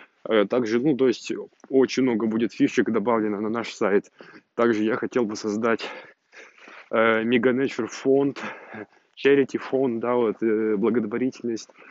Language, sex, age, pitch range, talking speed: Russian, male, 20-39, 110-125 Hz, 125 wpm